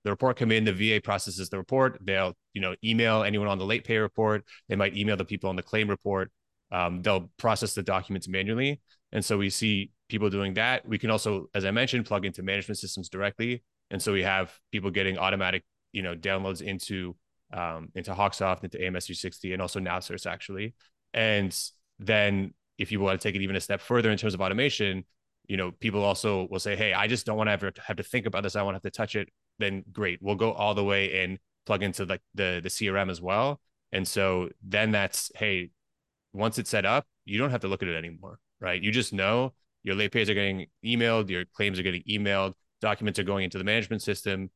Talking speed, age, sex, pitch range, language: 225 wpm, 20-39, male, 95-110 Hz, English